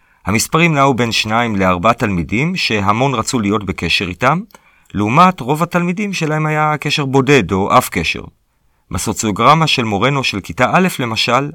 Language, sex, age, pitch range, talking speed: Hebrew, male, 40-59, 100-140 Hz, 145 wpm